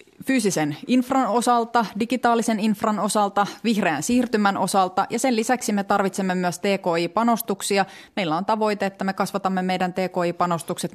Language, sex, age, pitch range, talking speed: Finnish, female, 30-49, 170-220 Hz, 130 wpm